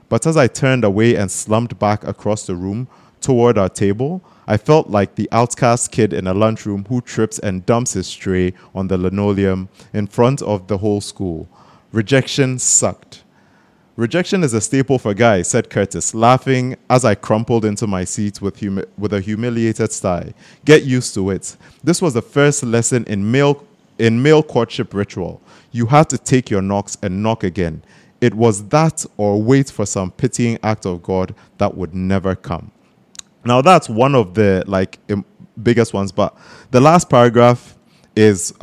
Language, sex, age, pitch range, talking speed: English, male, 30-49, 100-125 Hz, 175 wpm